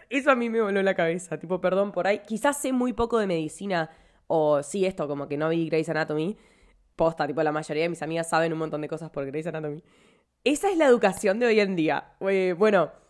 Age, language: 20-39, Spanish